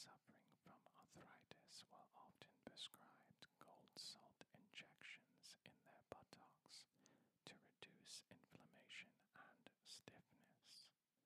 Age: 40-59